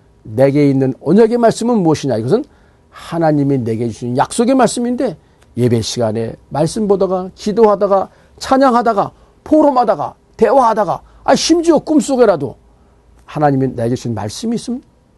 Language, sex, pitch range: Korean, male, 140-220 Hz